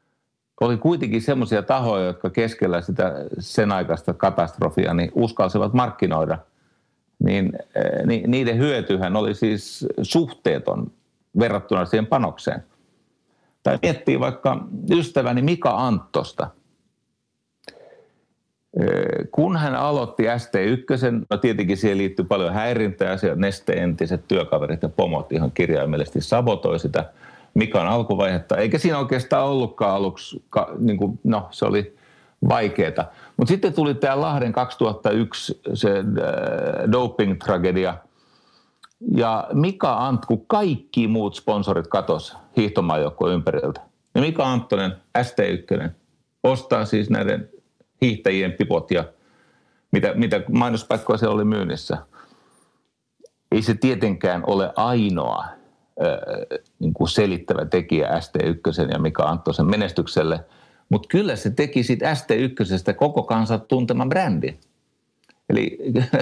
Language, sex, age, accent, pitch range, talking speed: Finnish, male, 60-79, native, 100-135 Hz, 110 wpm